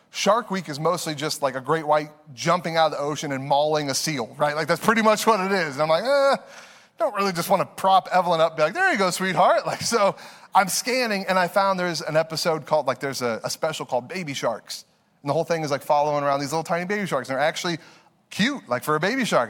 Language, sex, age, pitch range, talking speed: English, male, 30-49, 145-195 Hz, 270 wpm